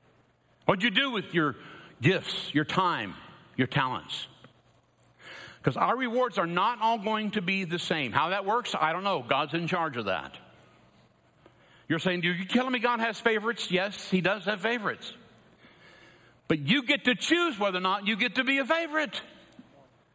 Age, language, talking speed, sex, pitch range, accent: 60-79, English, 180 wpm, male, 180-250 Hz, American